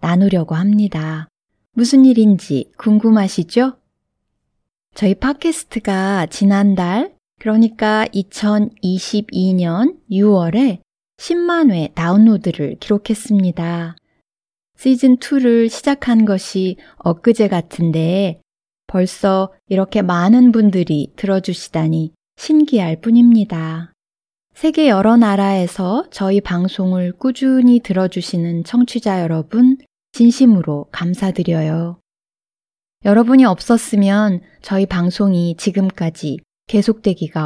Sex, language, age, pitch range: female, Korean, 20-39, 180-235 Hz